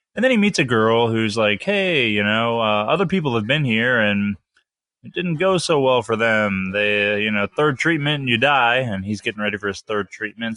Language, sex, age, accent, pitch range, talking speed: English, male, 20-39, American, 105-140 Hz, 235 wpm